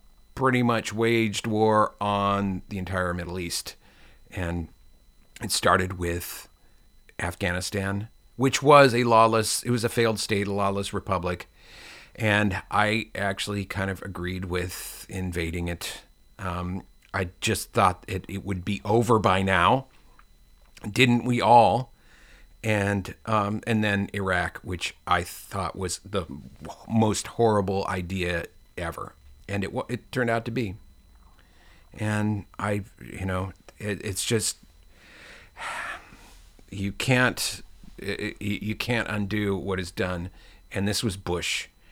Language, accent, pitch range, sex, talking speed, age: English, American, 90-110 Hz, male, 130 wpm, 40-59